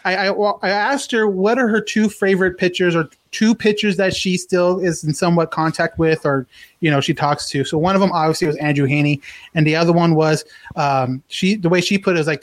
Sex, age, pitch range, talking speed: male, 30-49, 155-195 Hz, 240 wpm